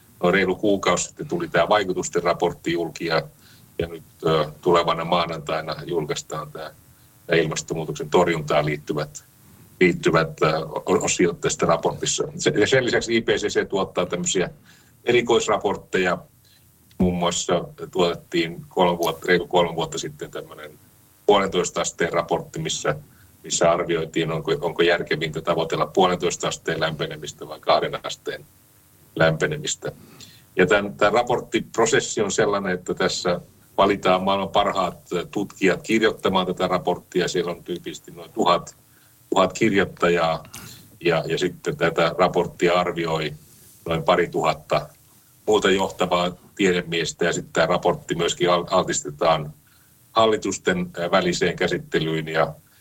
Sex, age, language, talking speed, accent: male, 40-59, Finnish, 110 wpm, native